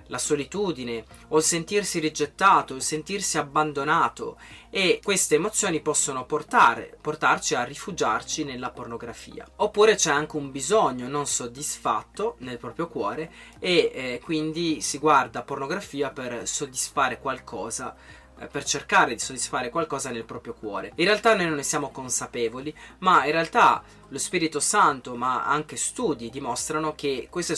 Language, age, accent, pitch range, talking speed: Italian, 20-39, native, 125-160 Hz, 140 wpm